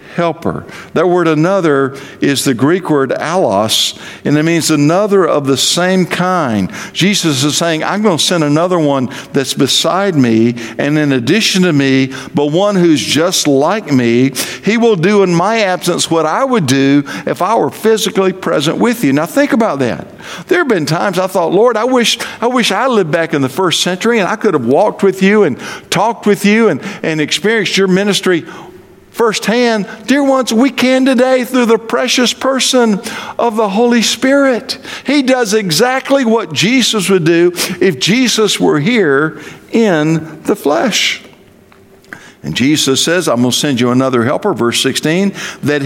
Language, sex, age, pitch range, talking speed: English, male, 50-69, 150-225 Hz, 180 wpm